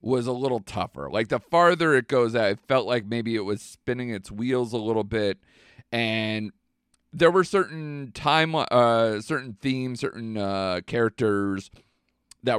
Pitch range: 95-125 Hz